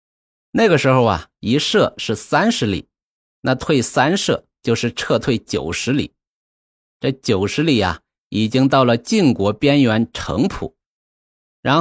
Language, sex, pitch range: Chinese, male, 105-140 Hz